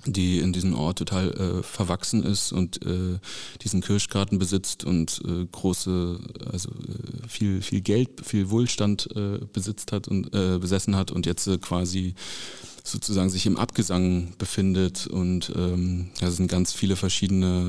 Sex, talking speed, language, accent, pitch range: male, 155 wpm, German, German, 90-110 Hz